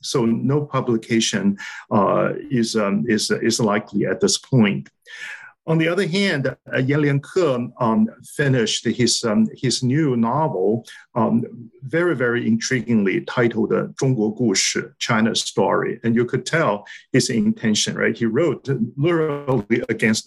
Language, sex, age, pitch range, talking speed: English, male, 50-69, 115-170 Hz, 125 wpm